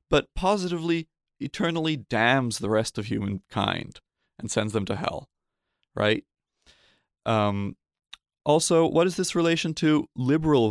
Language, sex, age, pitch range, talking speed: English, male, 30-49, 105-135 Hz, 125 wpm